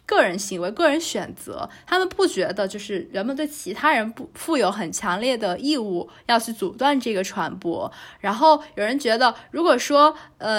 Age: 20-39